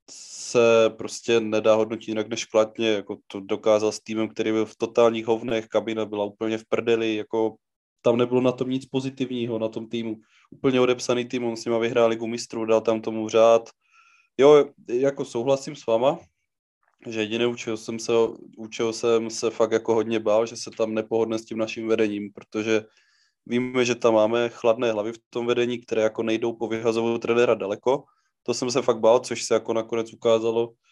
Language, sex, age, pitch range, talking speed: Czech, male, 20-39, 110-115 Hz, 185 wpm